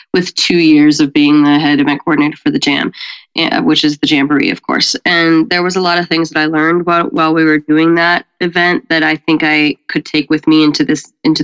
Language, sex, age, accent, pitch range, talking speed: English, female, 20-39, American, 160-210 Hz, 240 wpm